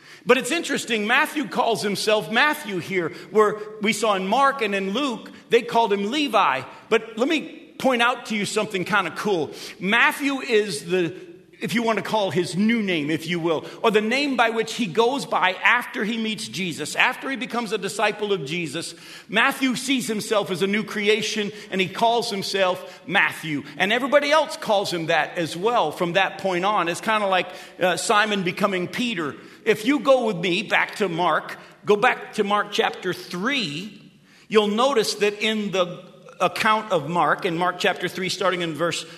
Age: 50-69